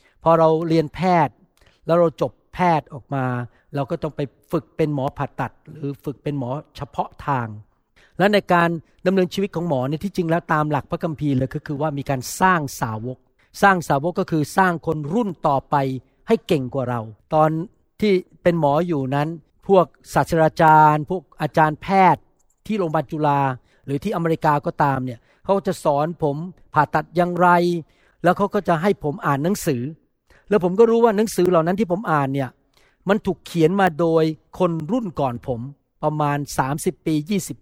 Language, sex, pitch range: Thai, male, 145-190 Hz